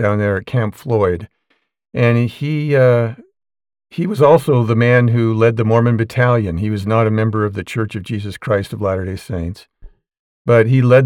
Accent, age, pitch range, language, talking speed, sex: American, 50-69, 110-125 Hz, English, 190 wpm, male